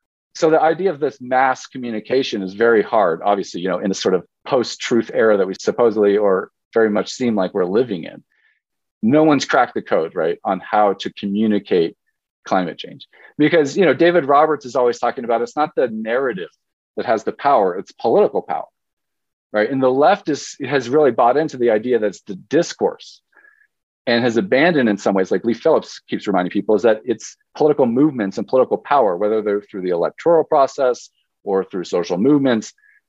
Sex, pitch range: male, 100-145 Hz